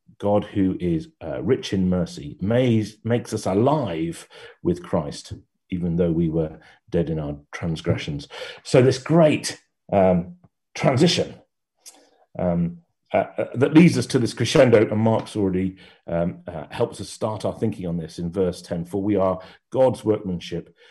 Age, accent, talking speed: 40-59, British, 155 wpm